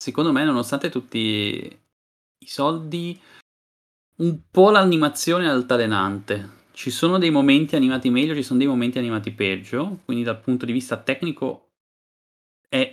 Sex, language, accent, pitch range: male, Italian, native, 105-140 Hz